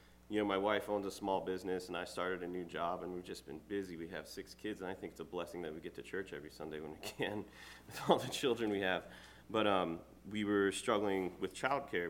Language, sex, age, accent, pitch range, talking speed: English, male, 30-49, American, 85-95 Hz, 265 wpm